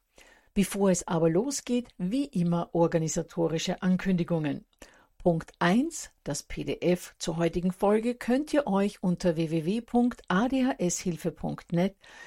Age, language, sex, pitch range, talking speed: 50-69, German, female, 165-200 Hz, 100 wpm